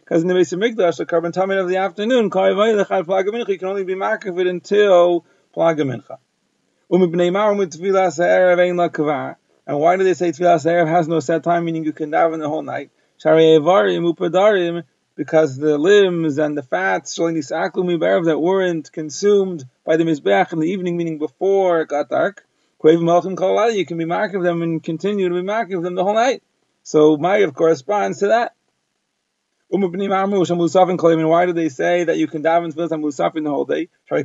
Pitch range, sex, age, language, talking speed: 165-190 Hz, male, 30-49, English, 165 wpm